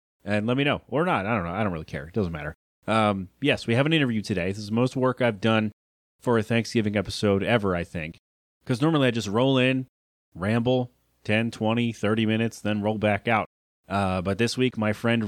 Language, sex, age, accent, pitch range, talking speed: English, male, 30-49, American, 100-125 Hz, 230 wpm